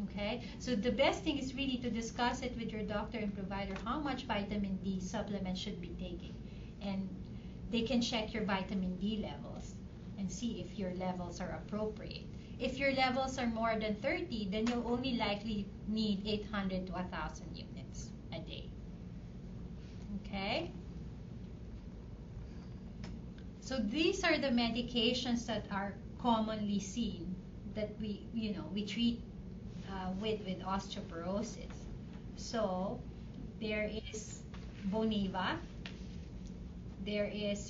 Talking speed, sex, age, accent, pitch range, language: 130 wpm, female, 30-49, Filipino, 195-230 Hz, English